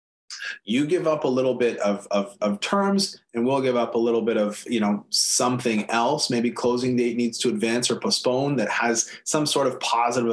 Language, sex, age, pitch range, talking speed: English, male, 30-49, 115-165 Hz, 210 wpm